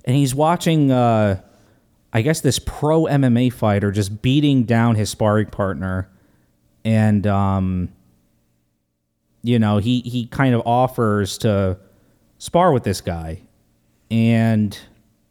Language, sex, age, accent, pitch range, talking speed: English, male, 30-49, American, 100-140 Hz, 120 wpm